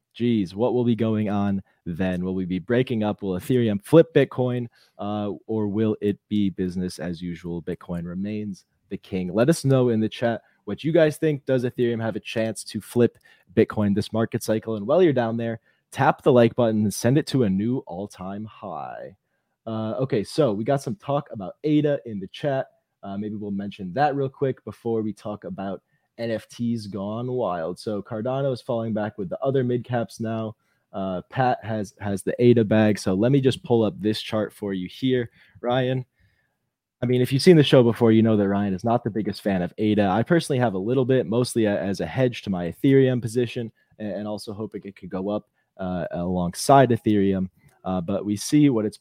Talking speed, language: 210 wpm, English